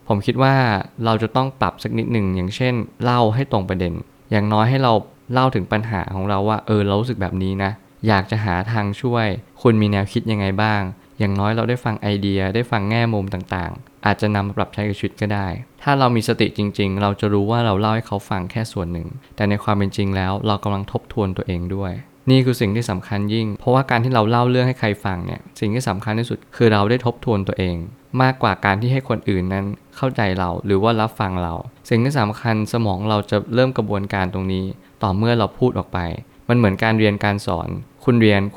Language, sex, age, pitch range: Thai, male, 20-39, 100-120 Hz